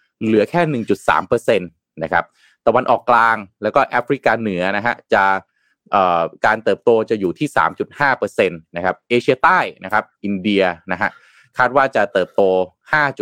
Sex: male